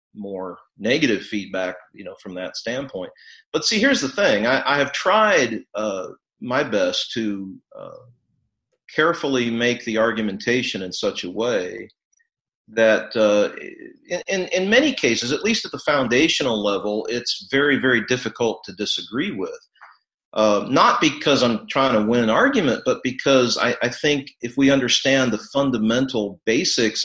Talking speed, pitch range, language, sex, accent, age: 155 wpm, 110-170 Hz, English, male, American, 40-59